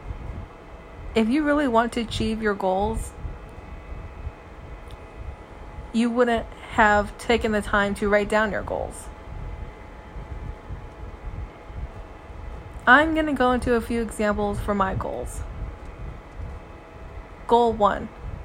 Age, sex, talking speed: 20-39, female, 105 wpm